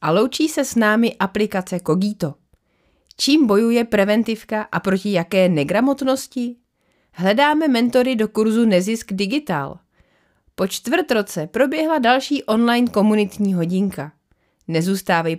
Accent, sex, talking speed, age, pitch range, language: native, female, 110 wpm, 30-49, 190-255 Hz, Czech